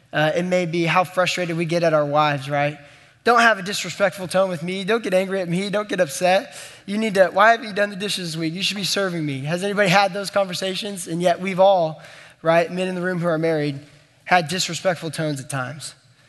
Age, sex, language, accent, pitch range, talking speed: 20-39, male, English, American, 155-190 Hz, 240 wpm